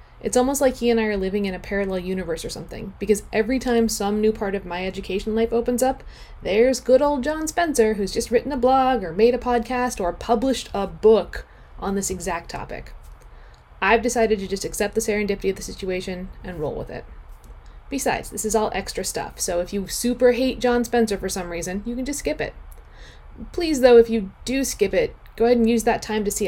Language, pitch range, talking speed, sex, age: English, 200-260 Hz, 220 wpm, female, 20-39